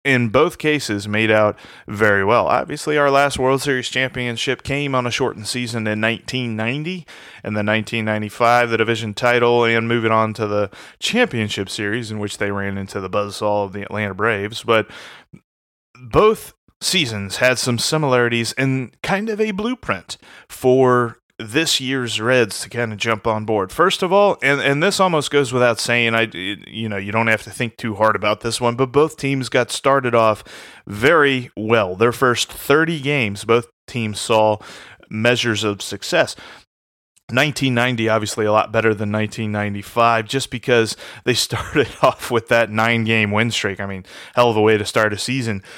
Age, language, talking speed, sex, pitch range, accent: 30-49, English, 175 wpm, male, 110-135 Hz, American